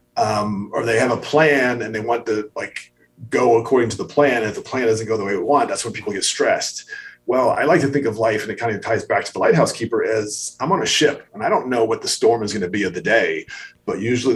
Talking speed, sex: 285 wpm, male